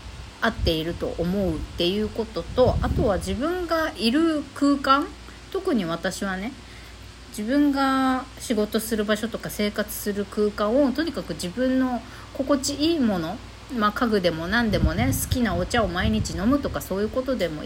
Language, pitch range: Japanese, 180-265 Hz